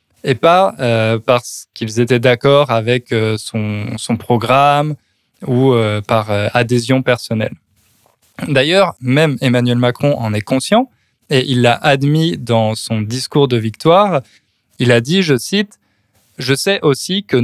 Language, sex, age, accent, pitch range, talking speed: French, male, 20-39, French, 115-145 Hz, 150 wpm